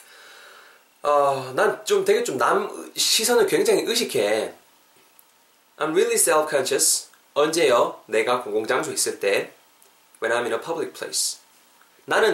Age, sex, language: 20-39, male, Korean